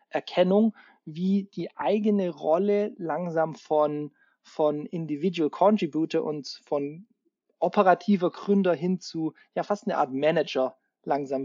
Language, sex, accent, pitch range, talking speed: German, male, German, 150-195 Hz, 115 wpm